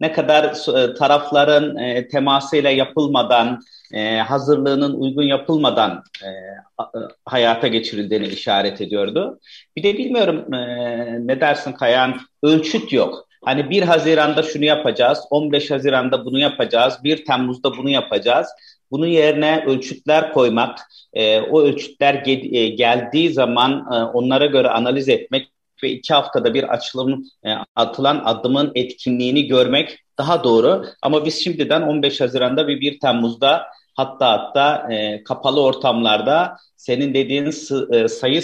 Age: 40-59